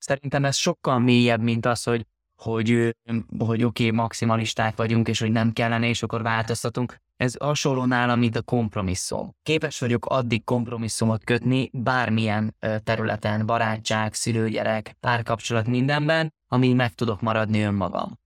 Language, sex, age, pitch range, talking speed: Hungarian, male, 20-39, 110-130 Hz, 140 wpm